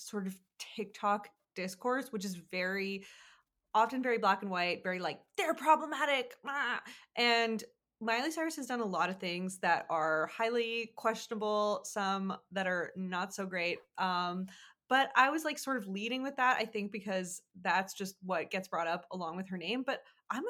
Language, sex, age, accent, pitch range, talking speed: English, female, 20-39, American, 185-240 Hz, 180 wpm